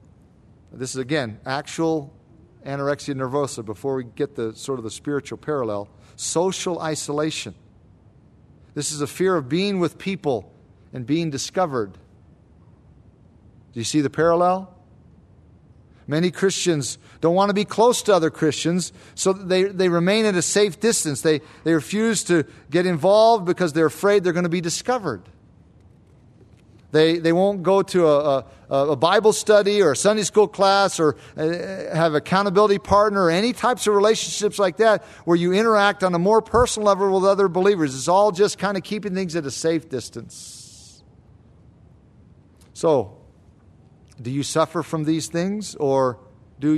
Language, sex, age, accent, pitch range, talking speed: English, male, 50-69, American, 135-195 Hz, 160 wpm